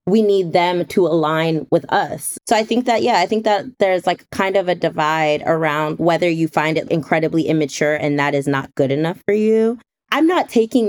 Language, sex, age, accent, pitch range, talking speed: English, female, 20-39, American, 155-205 Hz, 215 wpm